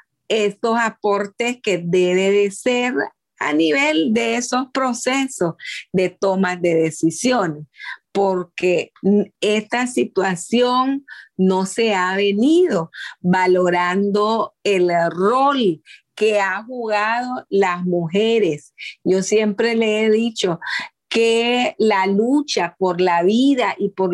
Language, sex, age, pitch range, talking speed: Spanish, female, 50-69, 180-235 Hz, 105 wpm